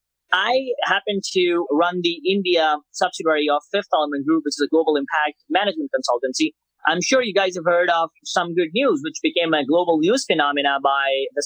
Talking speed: 190 wpm